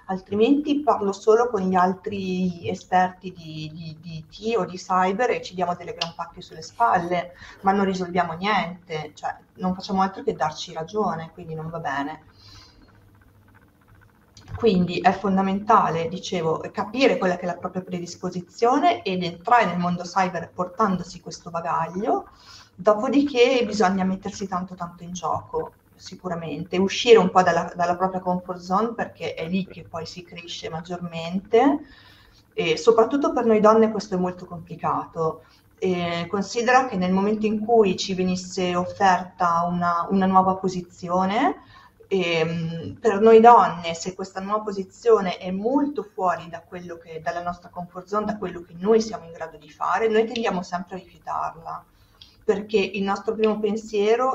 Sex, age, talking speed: female, 30-49, 155 wpm